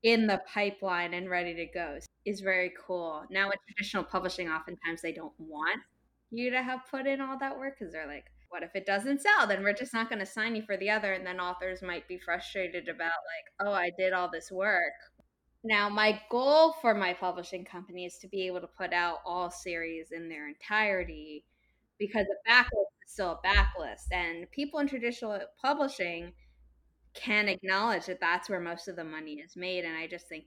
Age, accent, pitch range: 20-39, American, 175-215 Hz